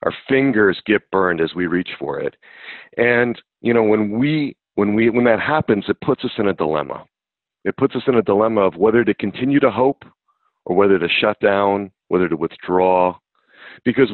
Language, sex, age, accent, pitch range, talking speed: English, male, 40-59, American, 100-135 Hz, 195 wpm